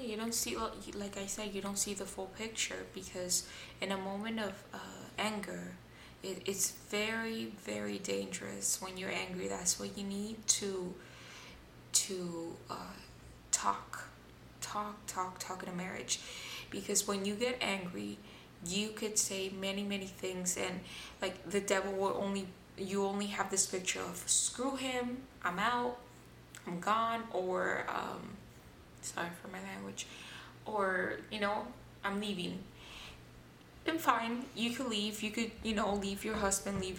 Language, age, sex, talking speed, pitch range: English, 20-39, female, 150 wpm, 180-225 Hz